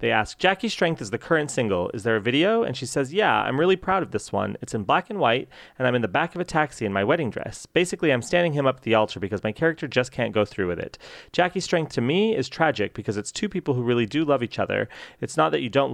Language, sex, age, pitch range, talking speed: English, male, 30-49, 110-145 Hz, 290 wpm